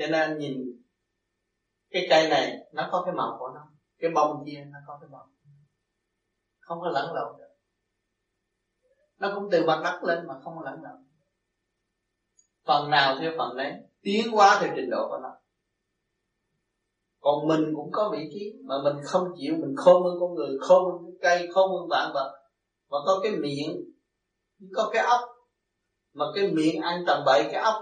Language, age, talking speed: Vietnamese, 30-49, 180 wpm